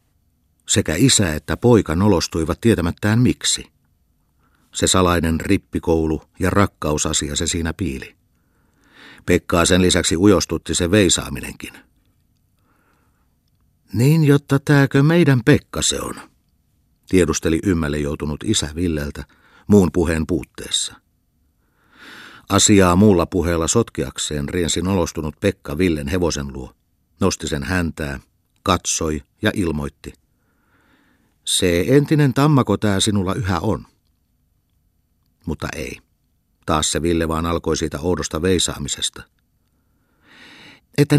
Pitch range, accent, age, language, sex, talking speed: 80-105 Hz, native, 50-69, Finnish, male, 100 wpm